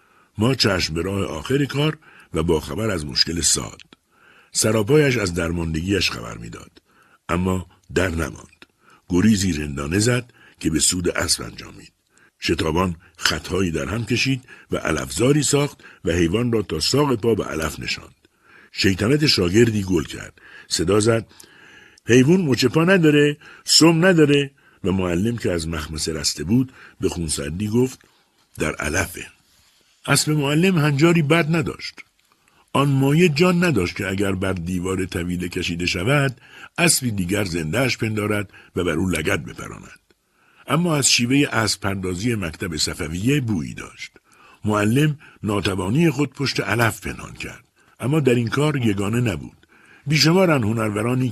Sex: male